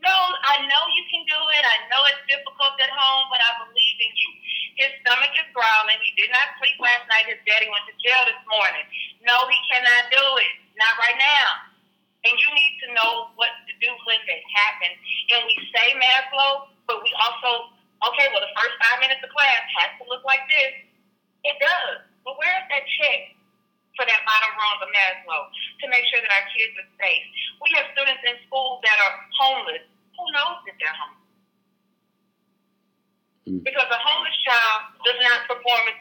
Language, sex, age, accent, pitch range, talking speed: English, female, 40-59, American, 200-270 Hz, 195 wpm